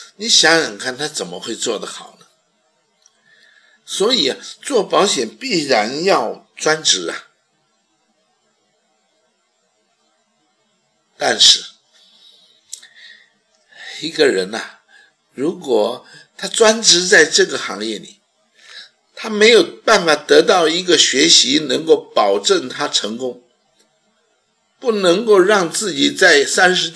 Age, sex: 60-79, male